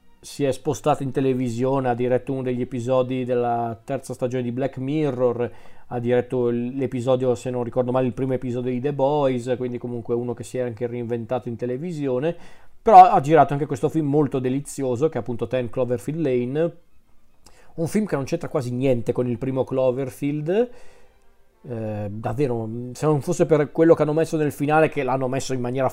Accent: native